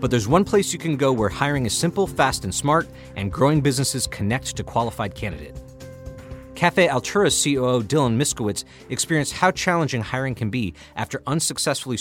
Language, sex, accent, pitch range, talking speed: English, male, American, 105-145 Hz, 170 wpm